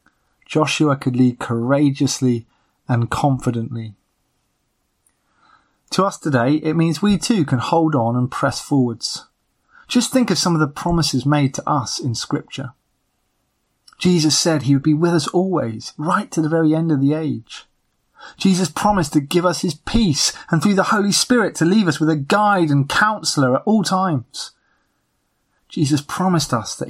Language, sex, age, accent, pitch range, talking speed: English, male, 30-49, British, 130-170 Hz, 165 wpm